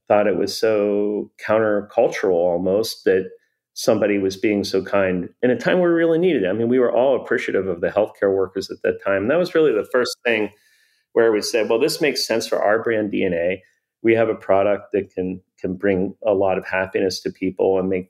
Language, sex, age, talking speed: English, male, 40-59, 220 wpm